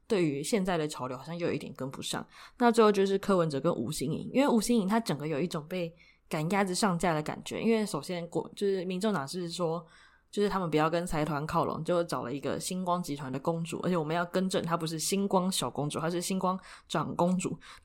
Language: Chinese